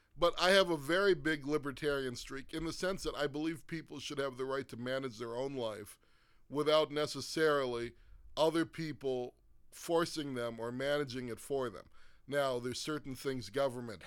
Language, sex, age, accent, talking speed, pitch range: English, male, 40-59, American, 170 wpm, 120-155 Hz